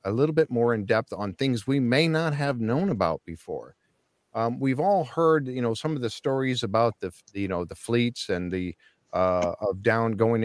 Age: 50-69